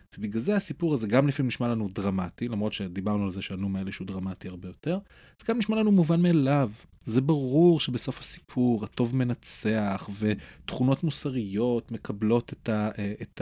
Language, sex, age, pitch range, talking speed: Hebrew, male, 30-49, 95-130 Hz, 150 wpm